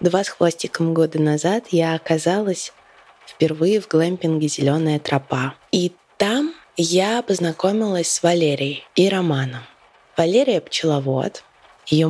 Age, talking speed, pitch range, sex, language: 20-39, 115 wpm, 160-185 Hz, female, Russian